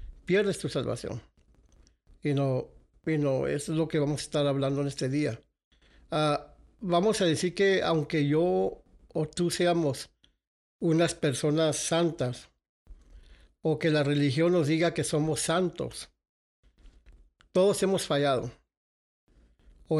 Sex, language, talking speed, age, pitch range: male, English, 130 wpm, 60-79, 135-165 Hz